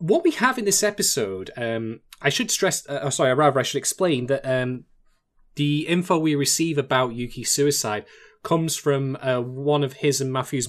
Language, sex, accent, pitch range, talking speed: English, male, British, 125-165 Hz, 185 wpm